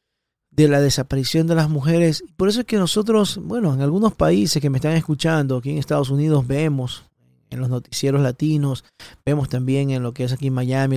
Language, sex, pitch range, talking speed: Spanish, male, 135-165 Hz, 200 wpm